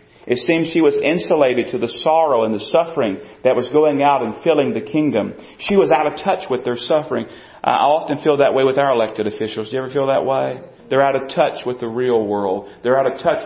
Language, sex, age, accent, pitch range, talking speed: English, male, 40-59, American, 125-150 Hz, 240 wpm